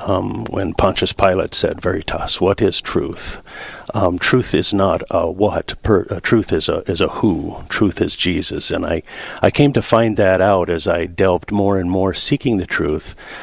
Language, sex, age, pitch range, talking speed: English, male, 50-69, 85-100 Hz, 190 wpm